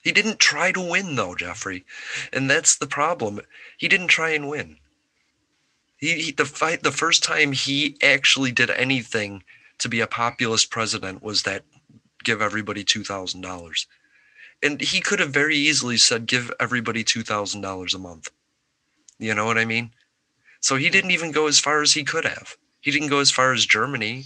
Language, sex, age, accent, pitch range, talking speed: English, male, 30-49, American, 105-140 Hz, 180 wpm